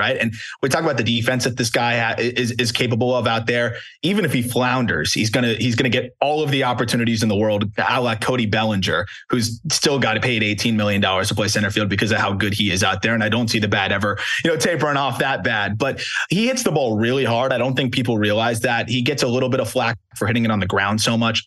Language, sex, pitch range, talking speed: English, male, 110-125 Hz, 275 wpm